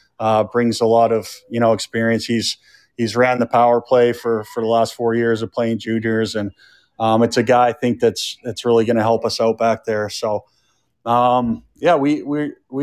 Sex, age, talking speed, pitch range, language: male, 30-49, 210 wpm, 115-130 Hz, English